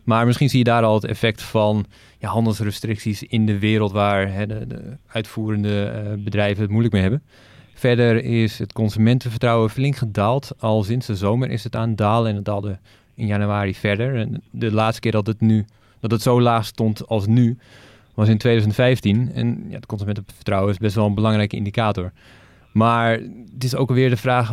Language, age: Dutch, 20-39